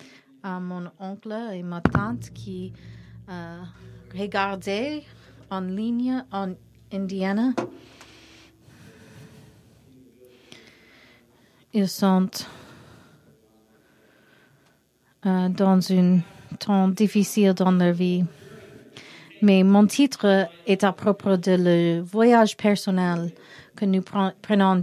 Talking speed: 85 wpm